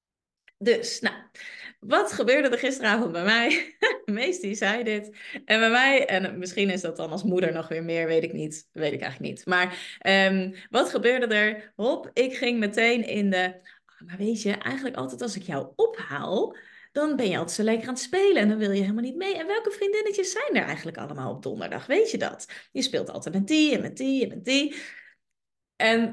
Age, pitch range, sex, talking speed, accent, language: 30-49, 200-295 Hz, female, 205 wpm, Dutch, Dutch